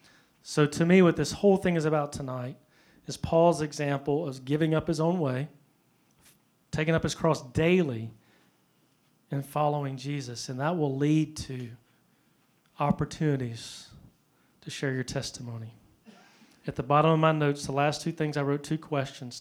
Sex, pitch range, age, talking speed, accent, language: male, 135-165 Hz, 40-59, 160 wpm, American, English